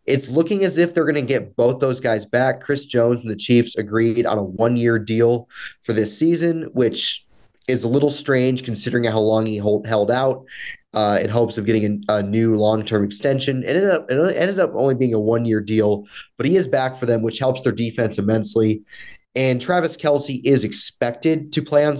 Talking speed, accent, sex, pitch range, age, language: 205 wpm, American, male, 110-130 Hz, 30-49, English